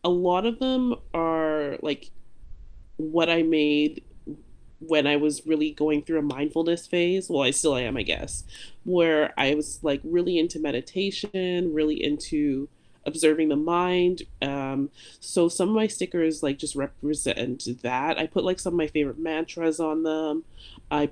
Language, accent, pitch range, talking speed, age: English, American, 145-175 Hz, 160 wpm, 30-49